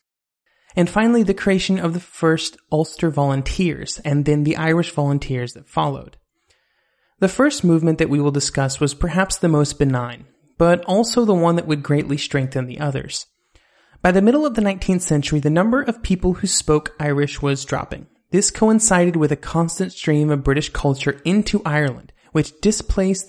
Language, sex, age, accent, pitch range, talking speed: English, male, 30-49, American, 145-180 Hz, 175 wpm